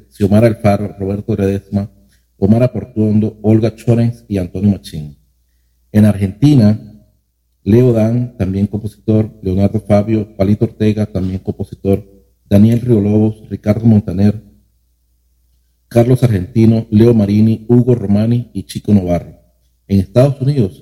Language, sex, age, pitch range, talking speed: Spanish, male, 40-59, 95-115 Hz, 115 wpm